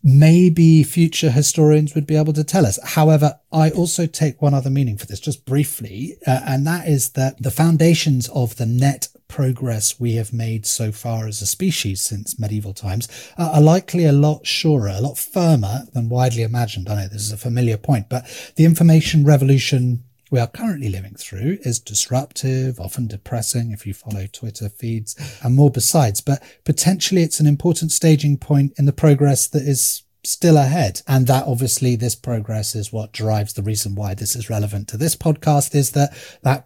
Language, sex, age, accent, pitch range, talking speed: English, male, 30-49, British, 115-145 Hz, 190 wpm